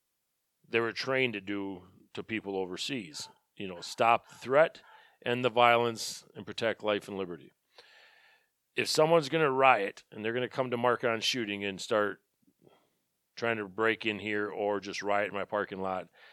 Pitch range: 100-125 Hz